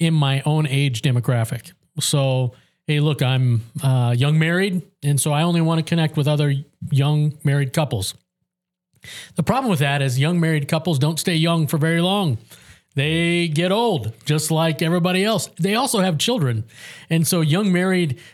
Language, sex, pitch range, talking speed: English, male, 145-175 Hz, 175 wpm